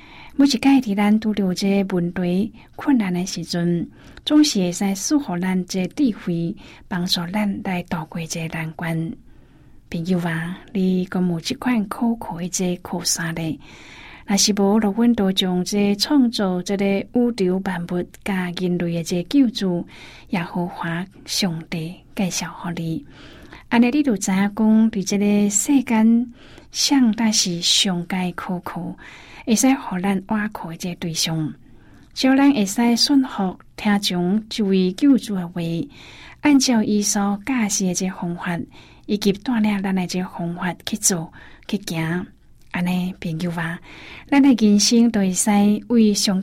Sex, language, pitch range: female, Chinese, 175-215 Hz